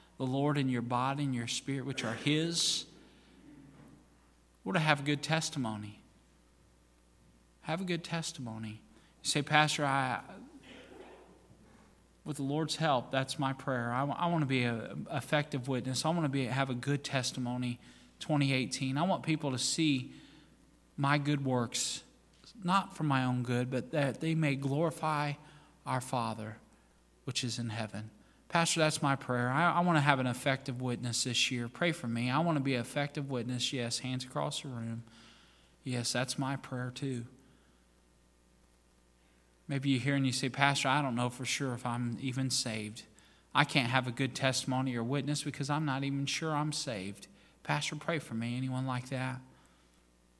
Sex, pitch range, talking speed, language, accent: male, 115-145 Hz, 170 wpm, English, American